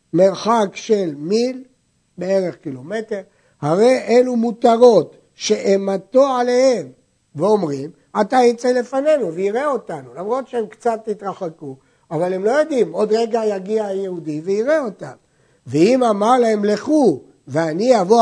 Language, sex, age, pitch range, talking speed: Hebrew, male, 60-79, 160-235 Hz, 120 wpm